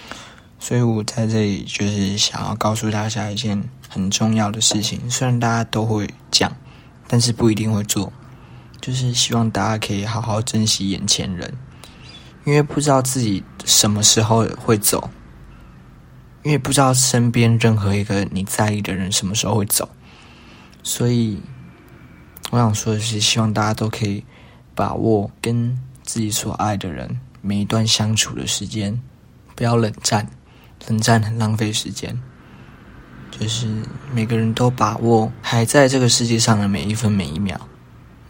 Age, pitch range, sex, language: 20-39, 105-120 Hz, male, Chinese